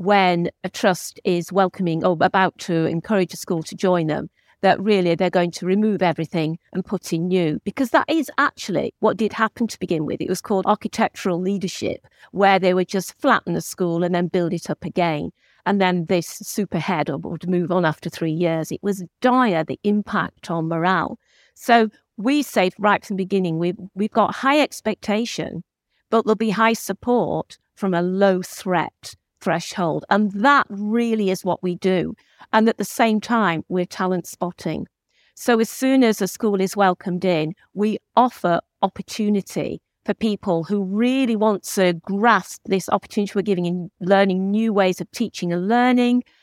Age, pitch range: 50-69, 175-215 Hz